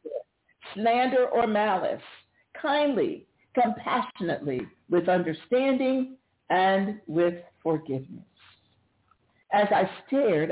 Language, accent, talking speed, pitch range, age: English, American, 75 wpm, 170-280 Hz, 50-69